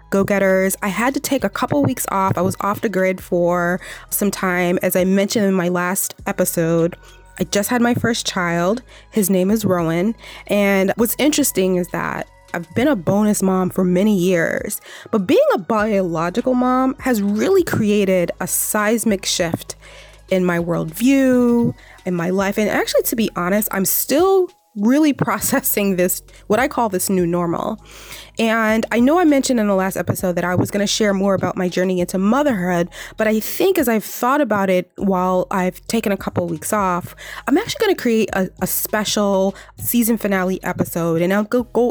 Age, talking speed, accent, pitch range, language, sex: 20-39, 190 wpm, American, 180-225 Hz, English, female